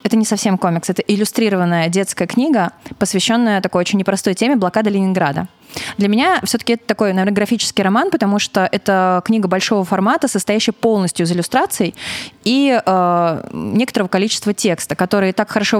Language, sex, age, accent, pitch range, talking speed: Russian, female, 20-39, native, 180-220 Hz, 155 wpm